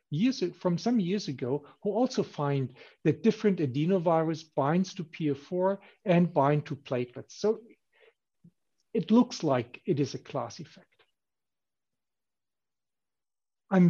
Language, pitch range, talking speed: German, 140-180 Hz, 120 wpm